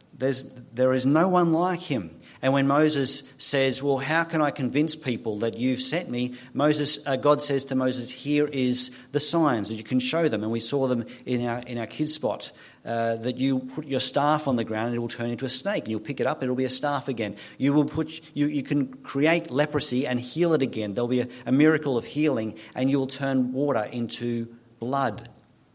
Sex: male